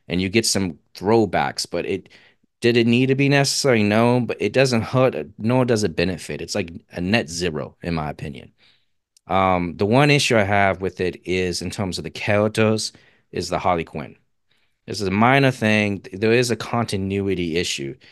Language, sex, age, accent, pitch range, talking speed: English, male, 30-49, American, 95-120 Hz, 190 wpm